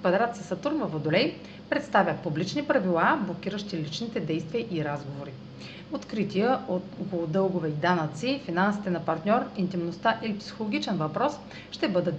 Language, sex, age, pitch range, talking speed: Bulgarian, female, 40-59, 165-230 Hz, 130 wpm